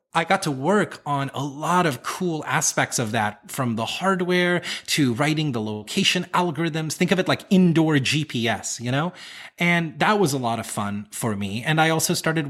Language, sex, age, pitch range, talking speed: English, male, 30-49, 120-165 Hz, 195 wpm